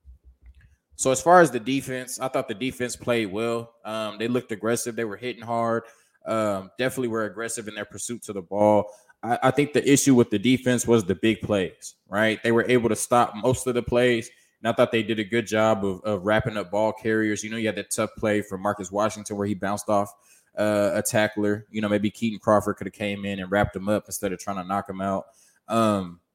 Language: English